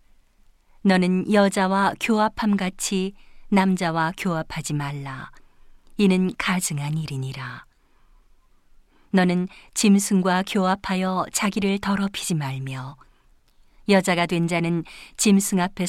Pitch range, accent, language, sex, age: 160-200 Hz, native, Korean, female, 40-59